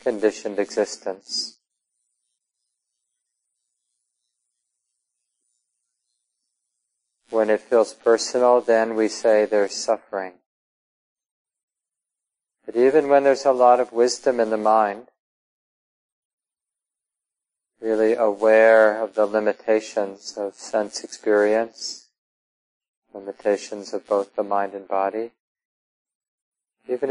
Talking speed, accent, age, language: 85 wpm, American, 40-59, English